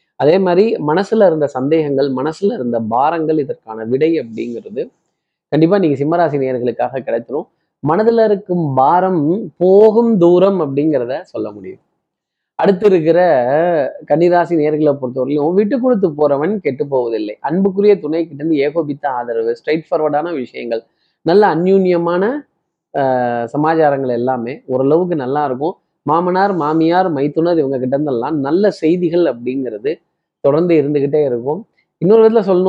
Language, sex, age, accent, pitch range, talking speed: Tamil, male, 20-39, native, 140-190 Hz, 115 wpm